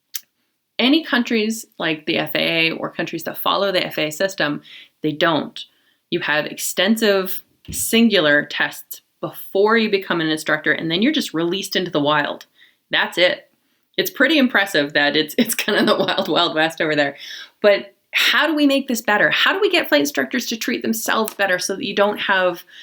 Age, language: 20-39, English